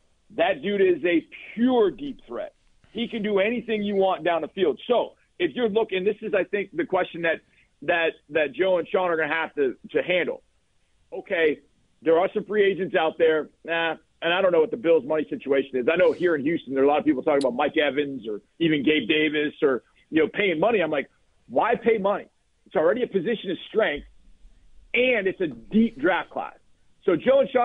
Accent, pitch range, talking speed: American, 160-240 Hz, 220 wpm